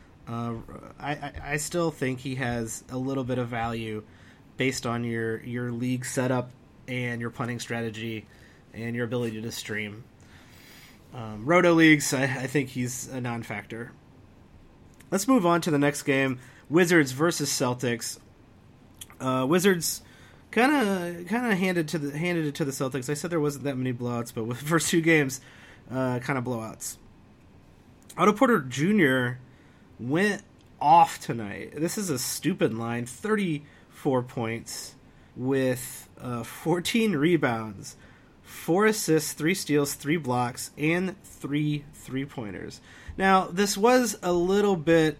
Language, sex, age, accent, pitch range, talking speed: English, male, 30-49, American, 120-165 Hz, 145 wpm